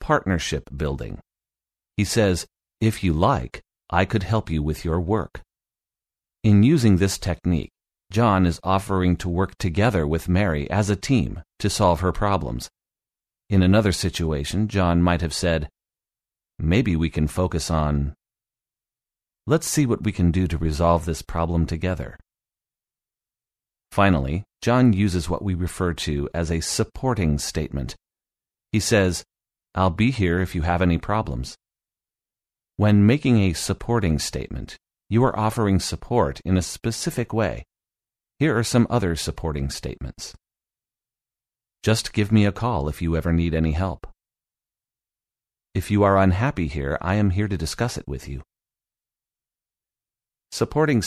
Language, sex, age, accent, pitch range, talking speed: English, male, 40-59, American, 80-105 Hz, 140 wpm